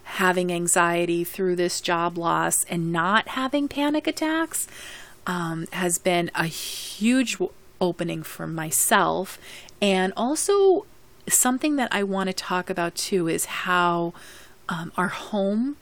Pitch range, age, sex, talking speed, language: 170-205 Hz, 30-49, female, 130 wpm, English